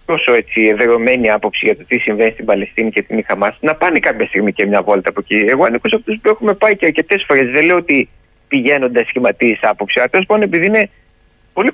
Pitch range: 120-185 Hz